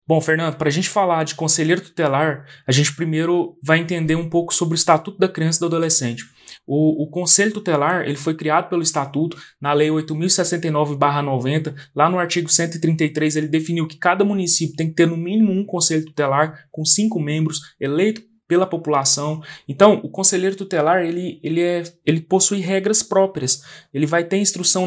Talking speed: 180 wpm